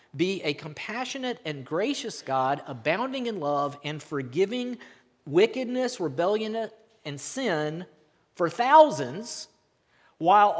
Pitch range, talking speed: 145-200 Hz, 100 wpm